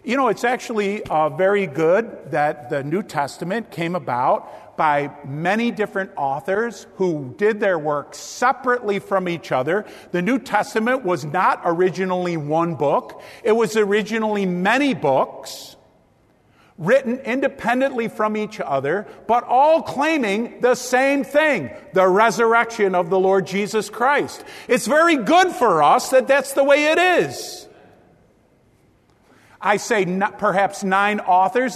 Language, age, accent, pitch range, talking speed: English, 50-69, American, 170-235 Hz, 135 wpm